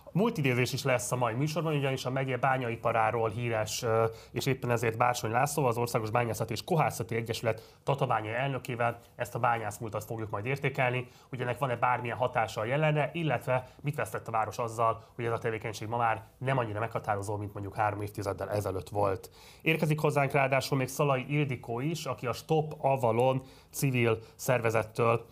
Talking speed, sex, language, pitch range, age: 165 wpm, male, Hungarian, 110-130 Hz, 30-49